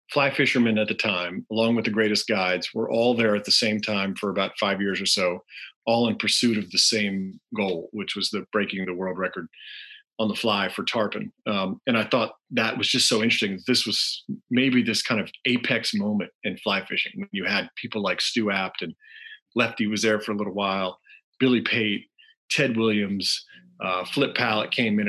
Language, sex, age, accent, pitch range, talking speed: English, male, 40-59, American, 100-130 Hz, 205 wpm